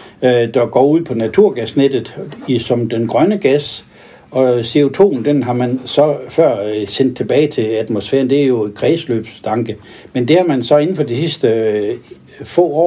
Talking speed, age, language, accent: 170 wpm, 60-79, Danish, native